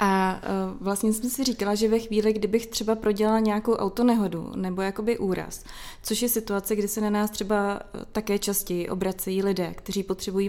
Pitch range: 195-210 Hz